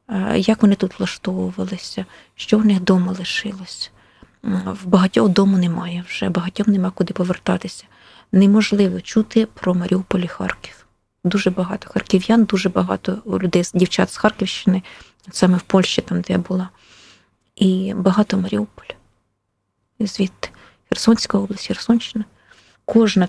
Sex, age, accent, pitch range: female, 20-39, native, 185-210 Hz